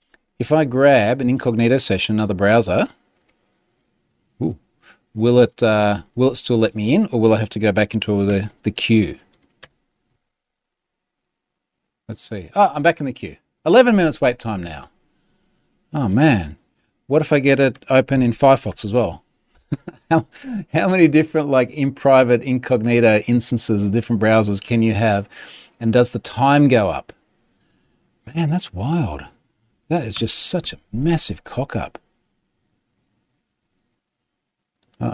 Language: English